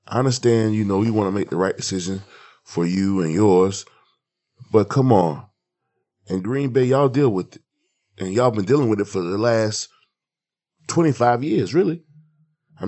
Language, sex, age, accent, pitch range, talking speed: English, male, 20-39, American, 105-150 Hz, 175 wpm